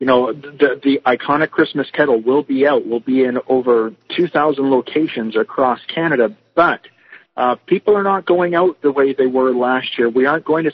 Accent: American